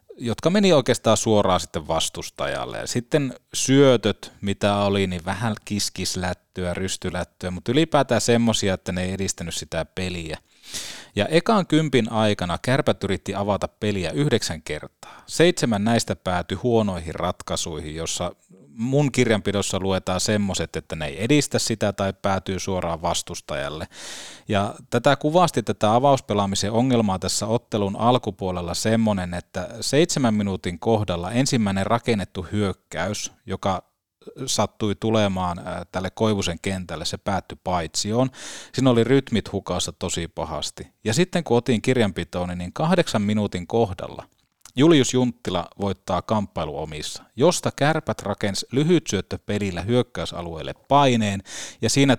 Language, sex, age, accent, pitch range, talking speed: Finnish, male, 30-49, native, 90-115 Hz, 125 wpm